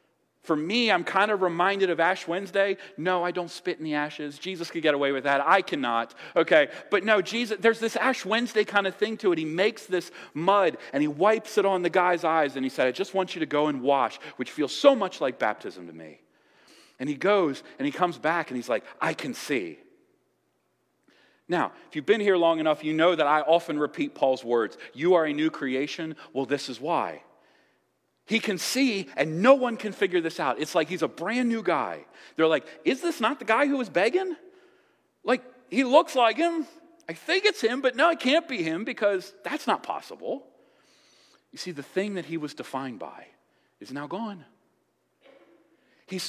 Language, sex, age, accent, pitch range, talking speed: English, male, 40-59, American, 155-230 Hz, 215 wpm